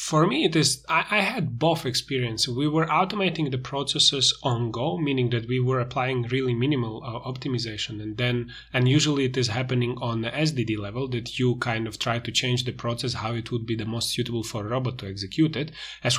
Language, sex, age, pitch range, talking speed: English, male, 30-49, 120-150 Hz, 220 wpm